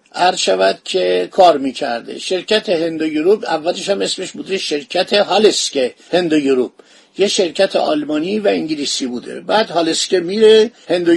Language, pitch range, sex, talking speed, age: Persian, 150-210 Hz, male, 135 wpm, 50-69